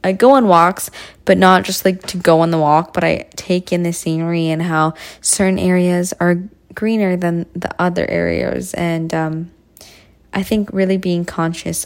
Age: 20-39